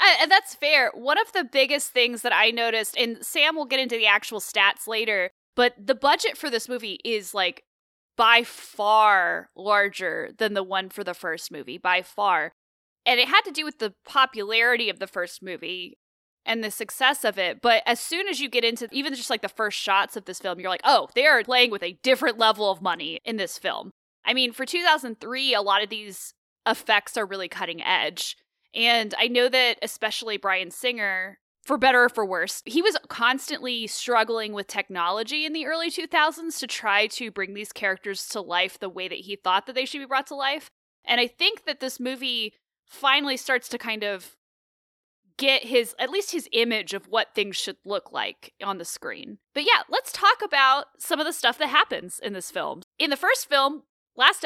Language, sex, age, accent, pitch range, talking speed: English, female, 10-29, American, 200-270 Hz, 205 wpm